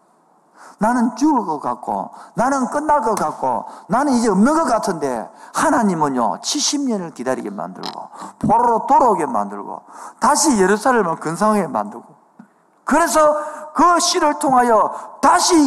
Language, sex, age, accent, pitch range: Korean, male, 50-69, native, 190-315 Hz